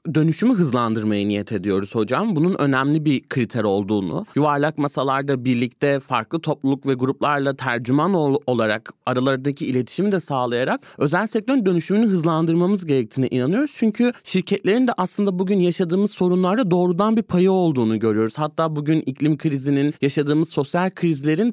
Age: 30-49